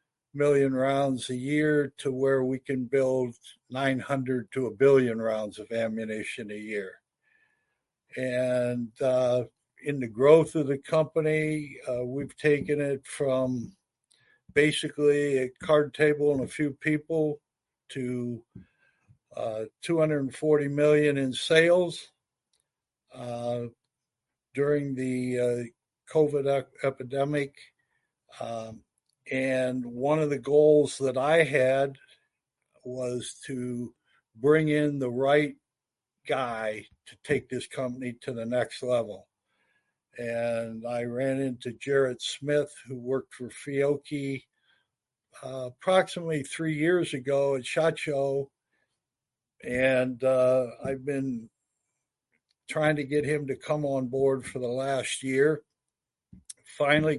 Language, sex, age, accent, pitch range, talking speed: English, male, 60-79, American, 125-145 Hz, 115 wpm